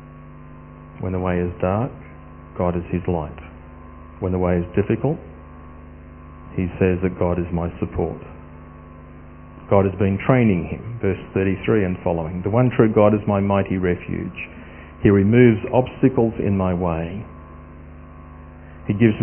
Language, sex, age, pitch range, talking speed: English, male, 40-59, 80-105 Hz, 145 wpm